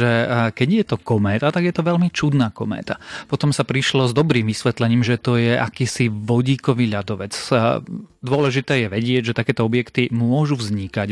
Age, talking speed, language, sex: 30-49, 165 wpm, Slovak, male